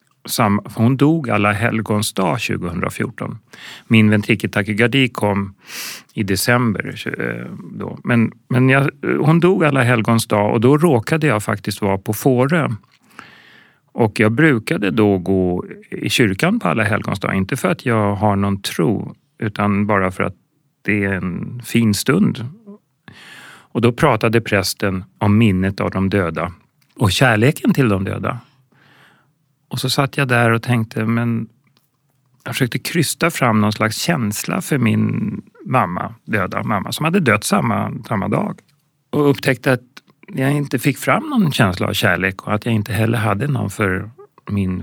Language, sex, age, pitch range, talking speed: Swedish, male, 40-59, 105-140 Hz, 155 wpm